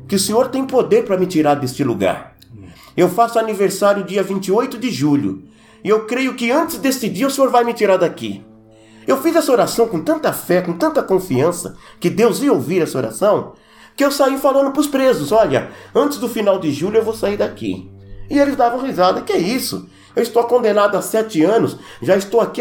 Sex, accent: male, Brazilian